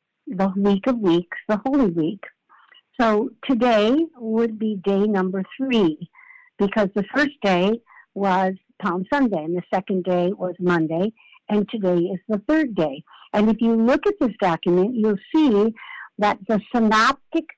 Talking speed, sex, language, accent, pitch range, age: 155 wpm, female, English, American, 195-275 Hz, 60-79